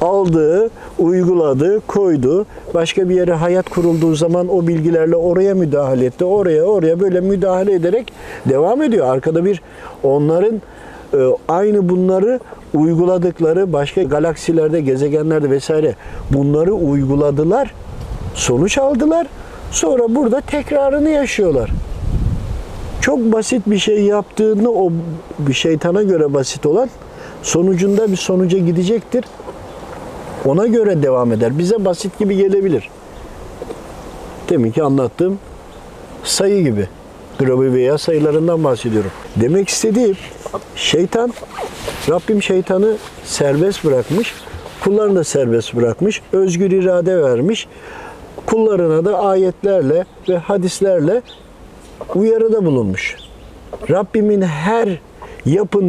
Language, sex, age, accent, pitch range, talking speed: Turkish, male, 50-69, native, 155-210 Hz, 100 wpm